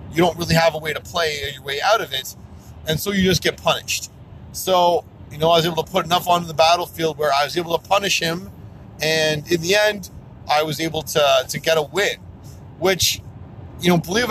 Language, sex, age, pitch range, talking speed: English, male, 30-49, 125-185 Hz, 230 wpm